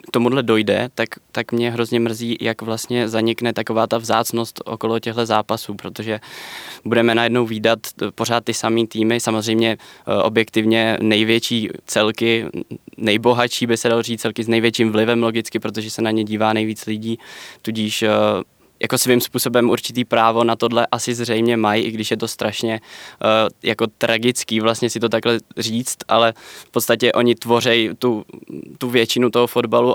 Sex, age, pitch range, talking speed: male, 20-39, 115-125 Hz, 160 wpm